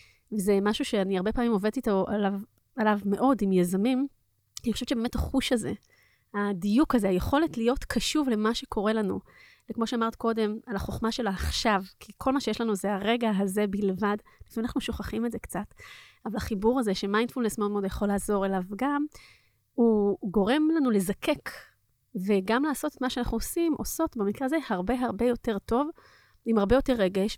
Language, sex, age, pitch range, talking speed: Hebrew, female, 30-49, 205-260 Hz, 170 wpm